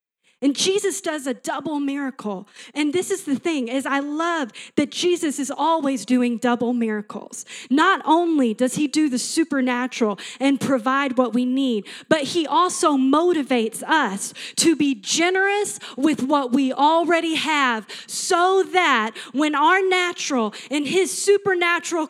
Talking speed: 145 wpm